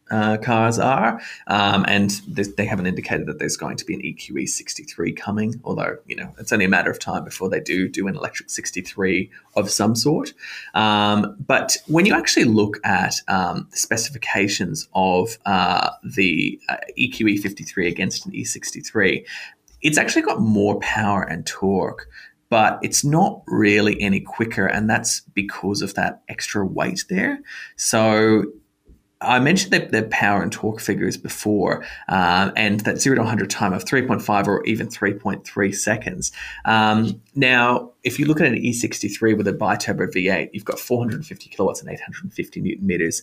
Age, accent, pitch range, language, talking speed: 20-39, Australian, 100-120 Hz, English, 165 wpm